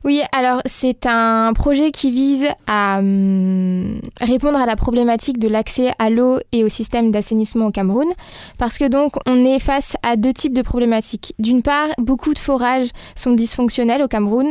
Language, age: French, 20-39